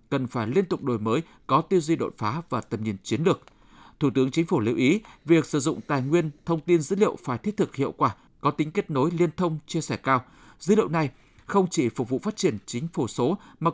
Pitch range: 135-180 Hz